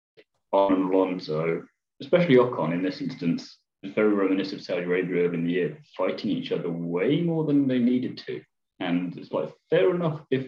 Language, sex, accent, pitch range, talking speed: English, male, British, 80-125 Hz, 180 wpm